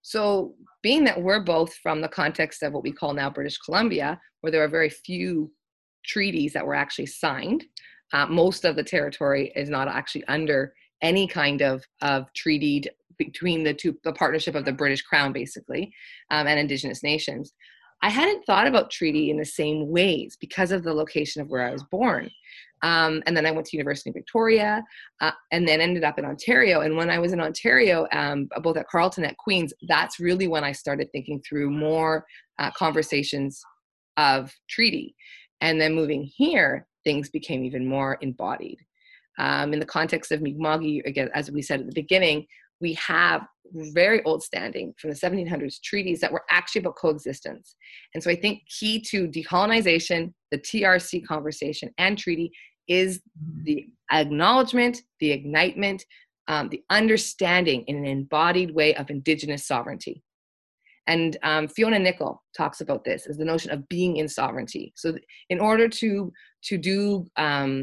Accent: American